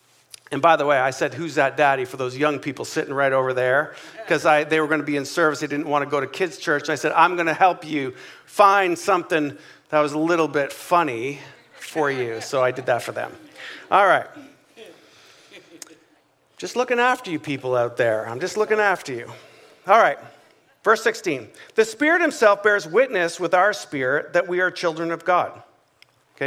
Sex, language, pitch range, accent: male, English, 145-205 Hz, American